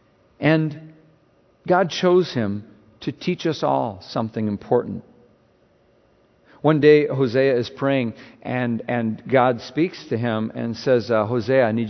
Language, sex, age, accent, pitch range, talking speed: English, male, 50-69, American, 100-125 Hz, 135 wpm